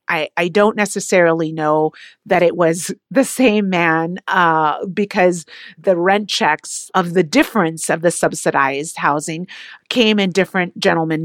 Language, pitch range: English, 185-250 Hz